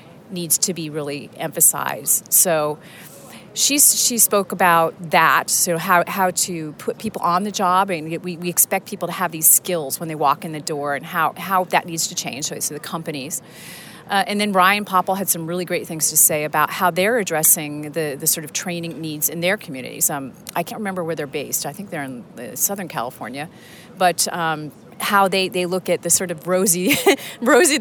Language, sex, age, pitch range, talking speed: English, female, 40-59, 160-195 Hz, 210 wpm